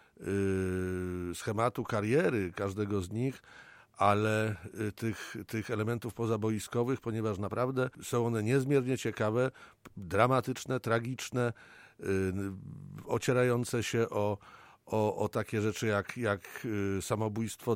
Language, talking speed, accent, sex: Polish, 95 wpm, native, male